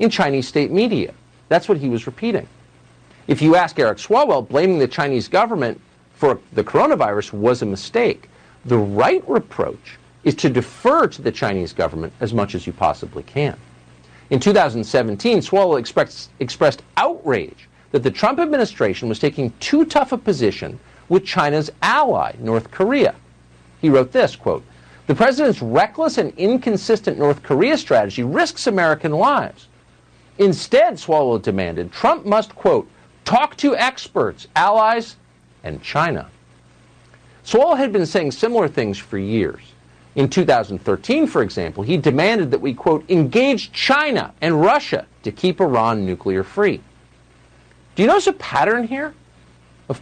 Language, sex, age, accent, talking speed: English, male, 50-69, American, 145 wpm